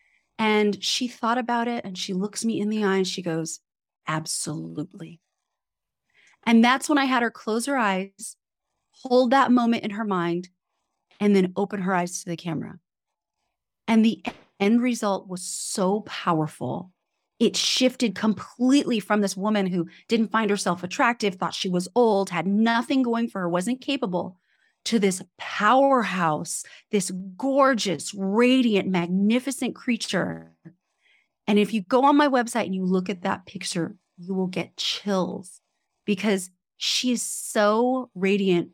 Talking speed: 150 wpm